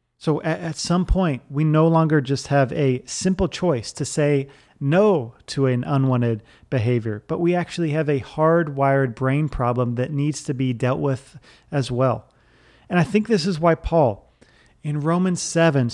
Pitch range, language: 125-165 Hz, English